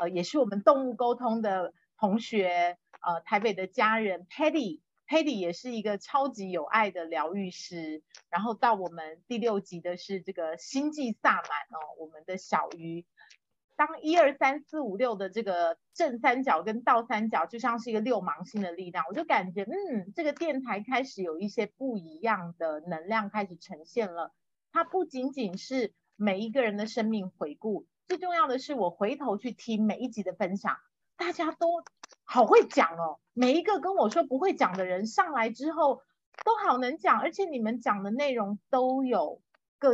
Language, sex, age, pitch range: Chinese, female, 30-49, 190-275 Hz